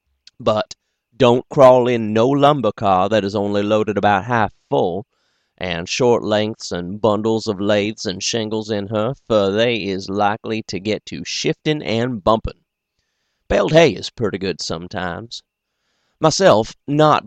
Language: English